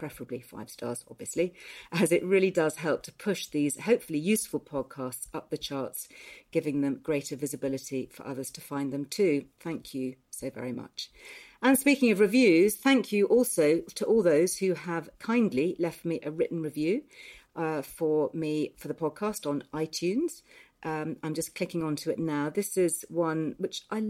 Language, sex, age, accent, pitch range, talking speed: English, female, 40-59, British, 150-205 Hz, 175 wpm